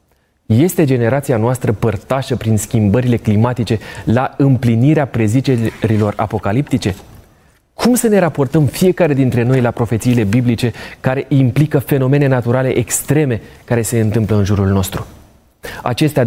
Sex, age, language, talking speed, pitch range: male, 20-39, Romanian, 120 wpm, 110-135 Hz